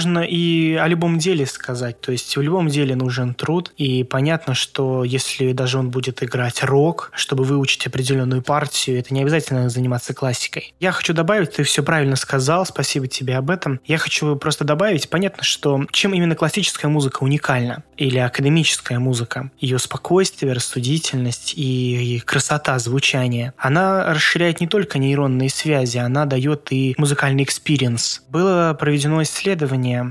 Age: 20-39